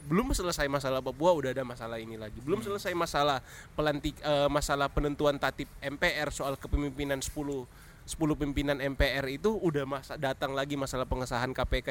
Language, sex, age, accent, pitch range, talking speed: Indonesian, male, 20-39, native, 130-170 Hz, 155 wpm